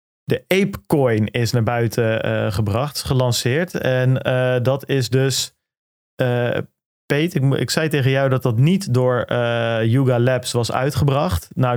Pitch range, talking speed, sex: 115-145 Hz, 155 wpm, male